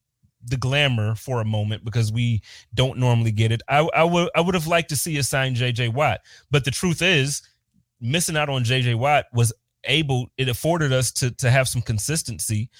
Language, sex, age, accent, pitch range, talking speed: English, male, 30-49, American, 120-145 Hz, 200 wpm